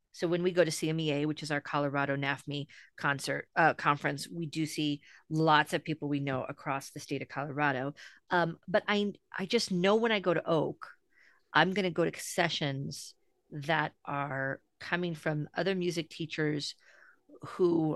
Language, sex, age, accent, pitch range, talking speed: English, female, 40-59, American, 145-175 Hz, 175 wpm